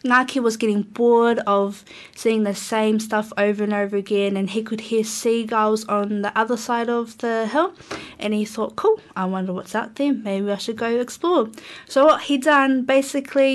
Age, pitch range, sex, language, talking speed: 20-39, 210-240 Hz, female, English, 195 wpm